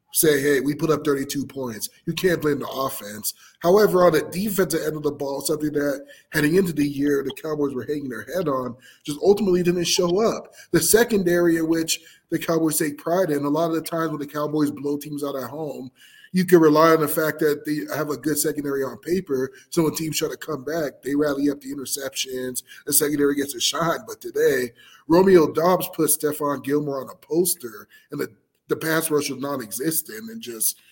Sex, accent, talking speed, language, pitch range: male, American, 215 wpm, English, 130-160 Hz